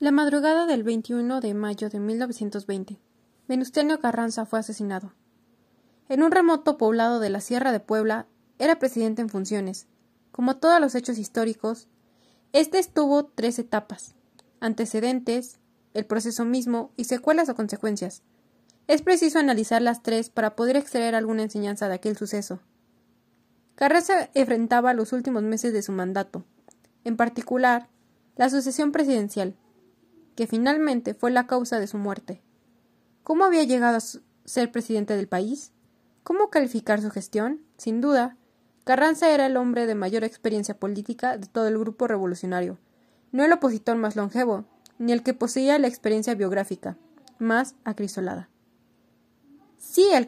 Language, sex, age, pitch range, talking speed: Spanish, female, 20-39, 215-260 Hz, 140 wpm